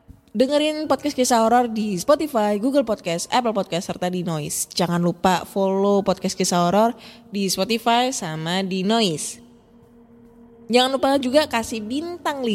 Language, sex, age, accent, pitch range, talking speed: Indonesian, female, 20-39, native, 185-235 Hz, 140 wpm